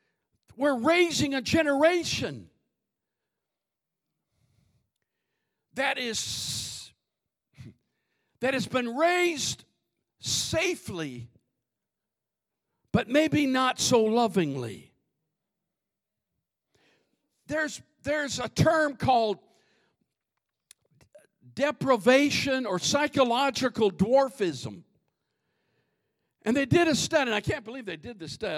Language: English